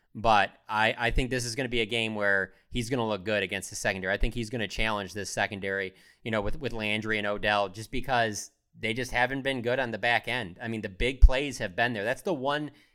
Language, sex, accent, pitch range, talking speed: English, male, American, 105-120 Hz, 265 wpm